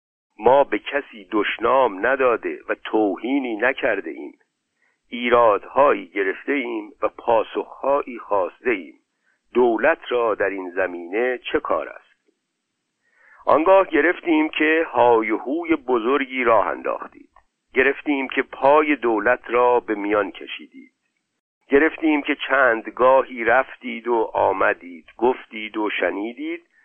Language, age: Persian, 50-69